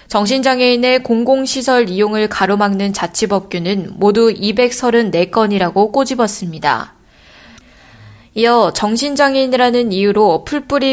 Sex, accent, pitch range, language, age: female, native, 200-245 Hz, Korean, 20-39